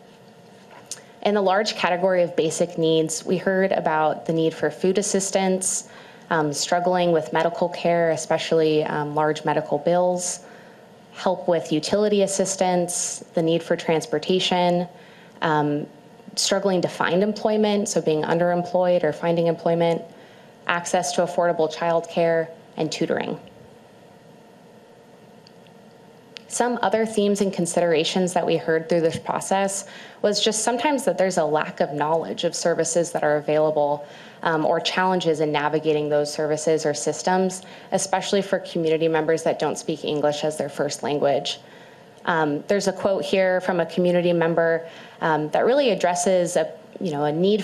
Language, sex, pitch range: English, female, 160-200 Hz